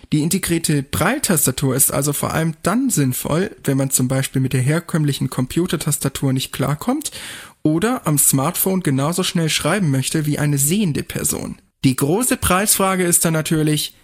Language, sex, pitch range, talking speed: German, male, 140-180 Hz, 155 wpm